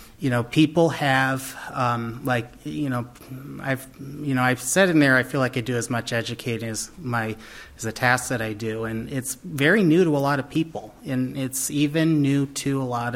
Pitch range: 115-135 Hz